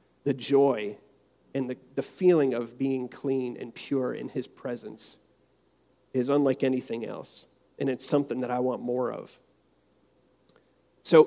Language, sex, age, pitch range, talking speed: English, male, 40-59, 125-155 Hz, 145 wpm